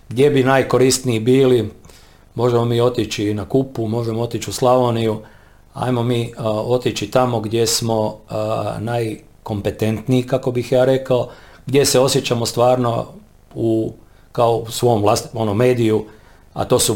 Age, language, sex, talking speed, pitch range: 40-59, Croatian, male, 140 wpm, 110-130 Hz